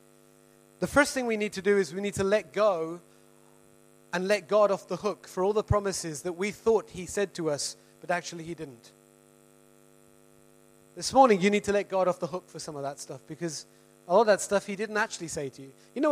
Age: 30-49